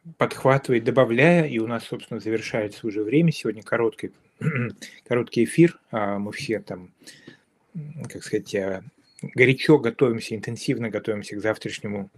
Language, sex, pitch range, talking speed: Russian, male, 110-145 Hz, 120 wpm